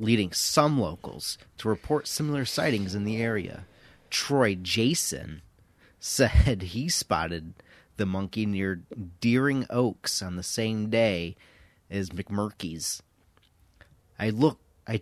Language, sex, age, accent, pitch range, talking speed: English, male, 30-49, American, 95-120 Hz, 110 wpm